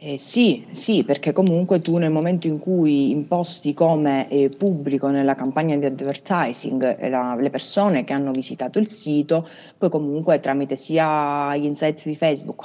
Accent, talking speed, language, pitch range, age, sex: native, 165 wpm, Italian, 135-160 Hz, 30-49, female